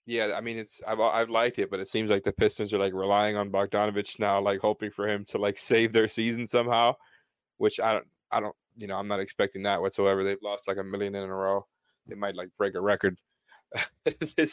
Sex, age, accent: male, 20-39, American